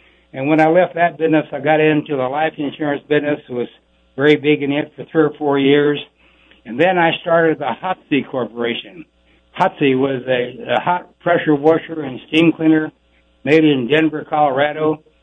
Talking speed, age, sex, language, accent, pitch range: 175 wpm, 60-79, male, English, American, 125-155 Hz